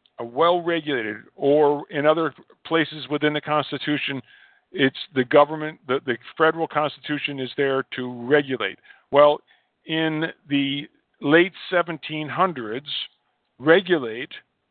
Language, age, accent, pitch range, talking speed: English, 50-69, American, 140-170 Hz, 105 wpm